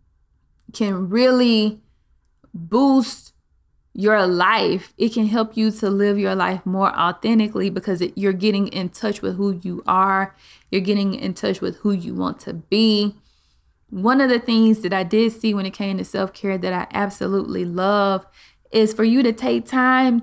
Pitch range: 180-220 Hz